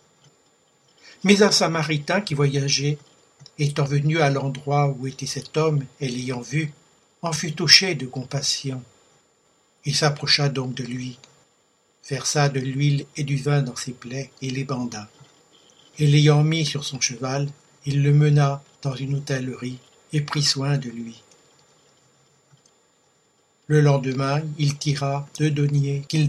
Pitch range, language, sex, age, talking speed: 135-150 Hz, French, male, 60-79, 140 wpm